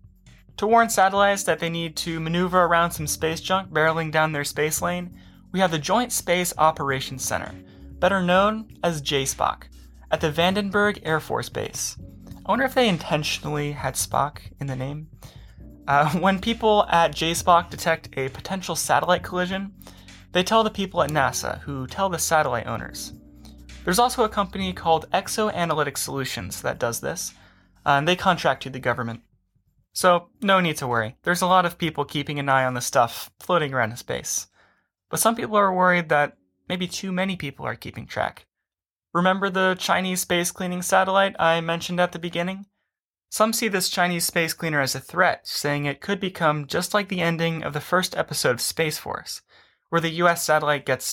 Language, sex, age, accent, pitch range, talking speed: English, male, 20-39, American, 130-185 Hz, 180 wpm